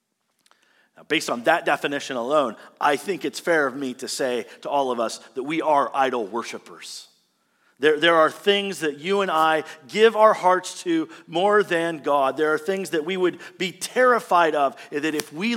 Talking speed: 190 wpm